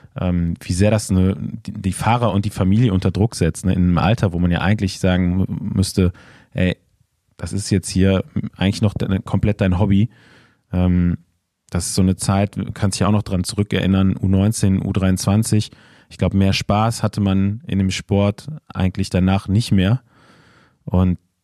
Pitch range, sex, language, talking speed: 95-110 Hz, male, German, 165 wpm